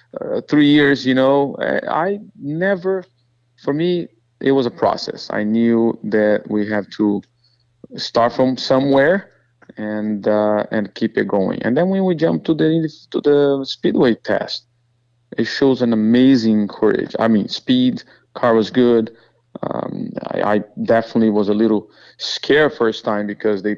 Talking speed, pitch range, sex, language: 160 wpm, 110-135 Hz, male, English